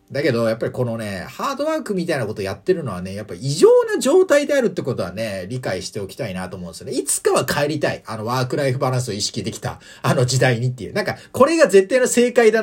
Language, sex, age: Japanese, male, 40-59